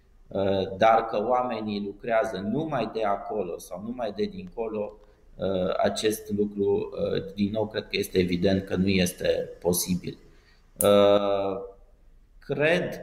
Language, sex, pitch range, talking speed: Romanian, male, 100-120 Hz, 110 wpm